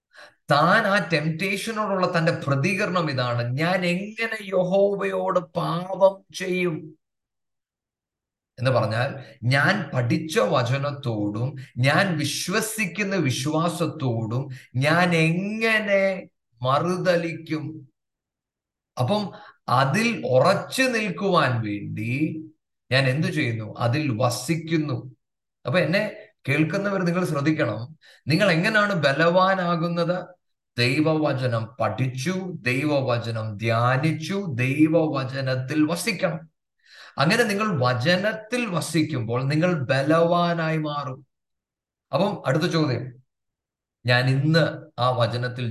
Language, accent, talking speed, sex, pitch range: English, Indian, 55 wpm, male, 125-180 Hz